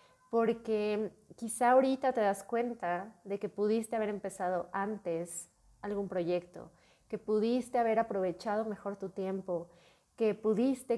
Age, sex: 30-49, female